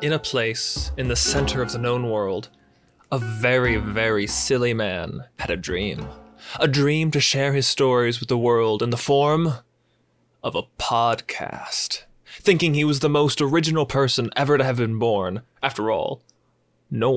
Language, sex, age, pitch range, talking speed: English, male, 20-39, 125-160 Hz, 170 wpm